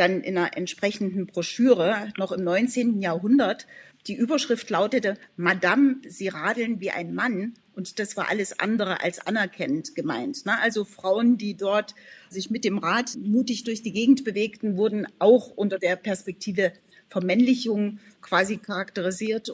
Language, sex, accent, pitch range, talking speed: German, female, German, 190-235 Hz, 145 wpm